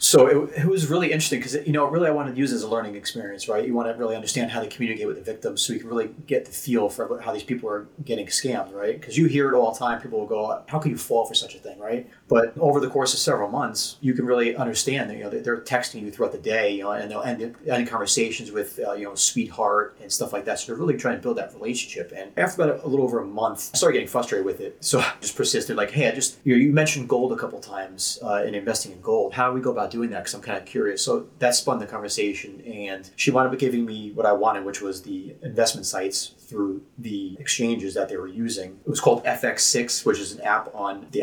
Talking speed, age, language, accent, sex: 280 wpm, 30-49, English, American, male